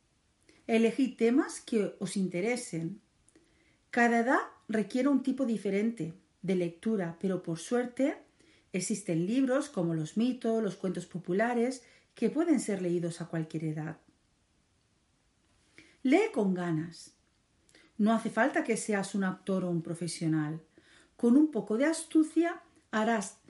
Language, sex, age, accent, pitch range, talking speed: Spanish, female, 40-59, Spanish, 180-255 Hz, 130 wpm